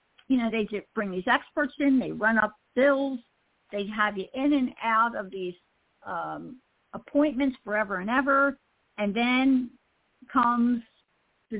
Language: English